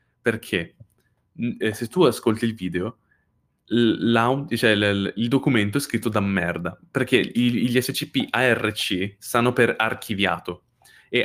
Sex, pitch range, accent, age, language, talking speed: male, 95-115 Hz, native, 20-39, Italian, 105 wpm